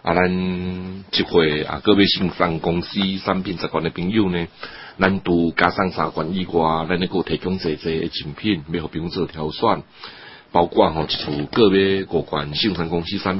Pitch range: 80-95 Hz